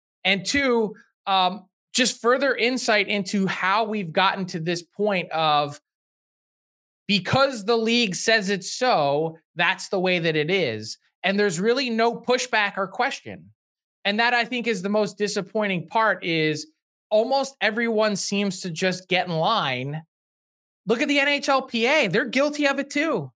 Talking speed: 155 wpm